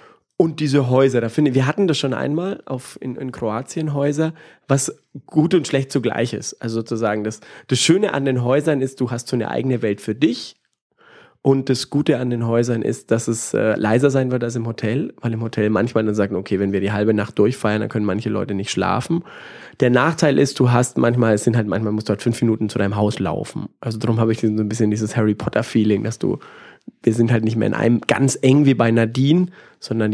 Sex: male